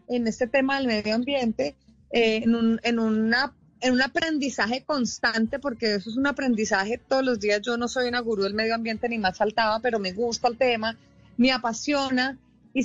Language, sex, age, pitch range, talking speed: English, female, 30-49, 230-275 Hz, 195 wpm